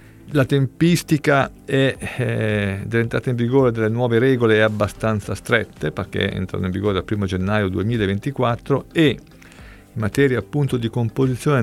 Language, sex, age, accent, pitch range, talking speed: Italian, male, 50-69, native, 100-120 Hz, 140 wpm